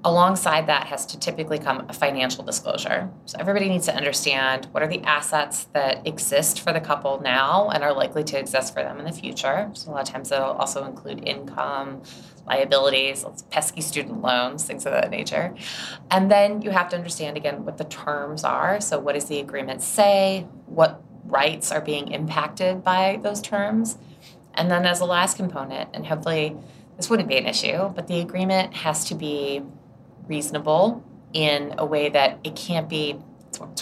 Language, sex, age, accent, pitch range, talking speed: English, female, 20-39, American, 140-180 Hz, 185 wpm